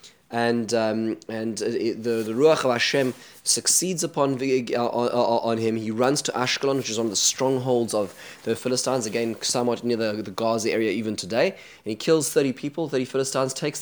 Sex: male